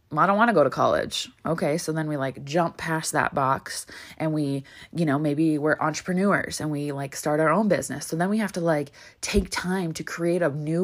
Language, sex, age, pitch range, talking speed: English, female, 20-39, 145-180 Hz, 235 wpm